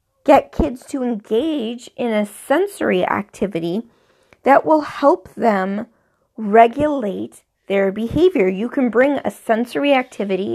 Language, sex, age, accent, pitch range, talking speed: English, female, 30-49, American, 200-255 Hz, 120 wpm